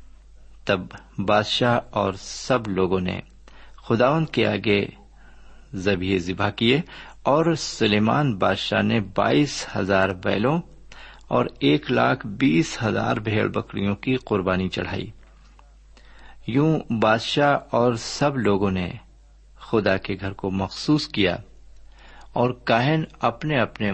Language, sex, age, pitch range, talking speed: Urdu, male, 50-69, 95-120 Hz, 115 wpm